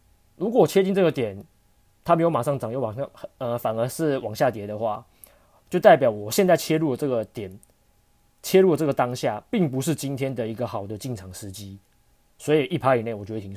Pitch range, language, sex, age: 110-145 Hz, Chinese, male, 20-39